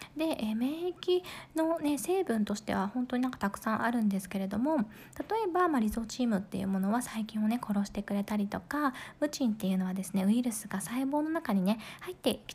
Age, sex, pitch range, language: 20-39, female, 205-290 Hz, Japanese